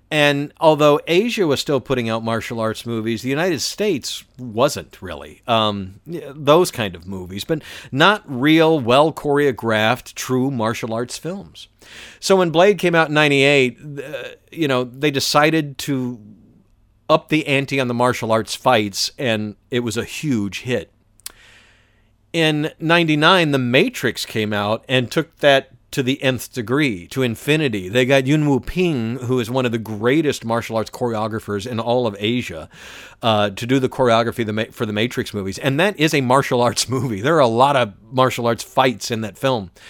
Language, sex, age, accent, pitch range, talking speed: English, male, 50-69, American, 110-145 Hz, 175 wpm